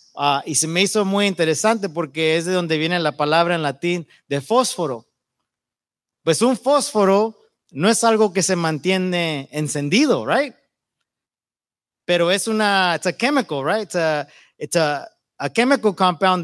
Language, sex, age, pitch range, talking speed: English, male, 30-49, 160-215 Hz, 155 wpm